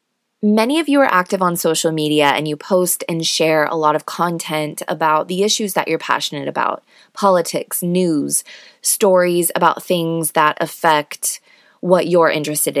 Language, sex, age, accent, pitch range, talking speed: English, female, 20-39, American, 165-215 Hz, 160 wpm